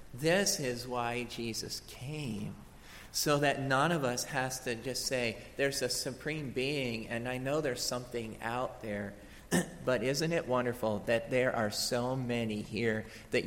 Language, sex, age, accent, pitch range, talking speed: English, male, 40-59, American, 105-135 Hz, 160 wpm